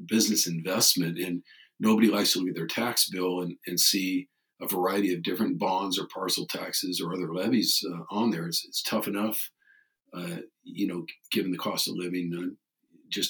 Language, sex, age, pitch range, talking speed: English, male, 50-69, 90-115 Hz, 190 wpm